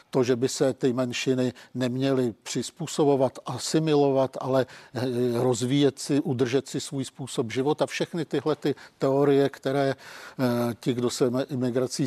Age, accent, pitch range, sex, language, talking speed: 50-69, native, 130-140 Hz, male, Czech, 125 wpm